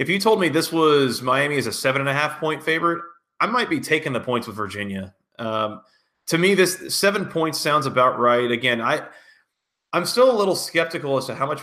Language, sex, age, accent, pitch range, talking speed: English, male, 30-49, American, 120-150 Hz, 205 wpm